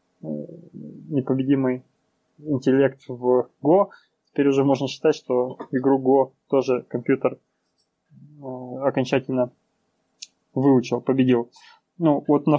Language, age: Russian, 20-39